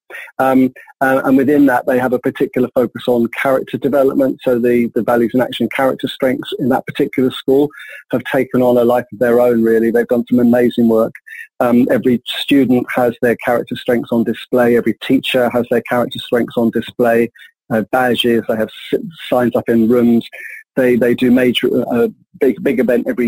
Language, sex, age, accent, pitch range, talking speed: English, male, 30-49, British, 120-135 Hz, 185 wpm